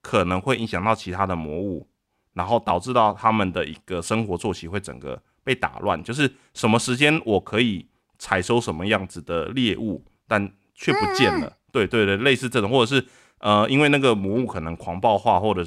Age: 20-39